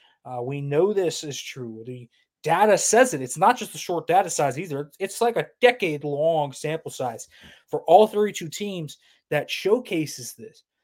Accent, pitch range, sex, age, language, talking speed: American, 135-180 Hz, male, 20-39, English, 170 wpm